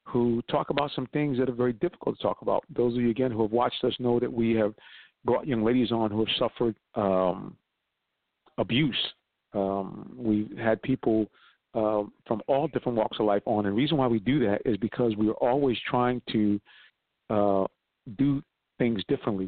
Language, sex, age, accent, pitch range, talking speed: English, male, 50-69, American, 105-130 Hz, 195 wpm